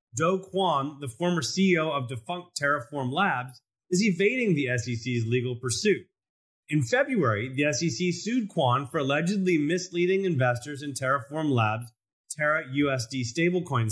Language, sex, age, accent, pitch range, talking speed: English, male, 30-49, American, 125-180 Hz, 130 wpm